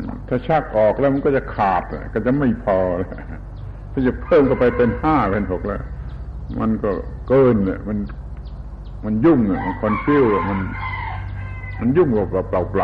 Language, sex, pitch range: Thai, male, 85-120 Hz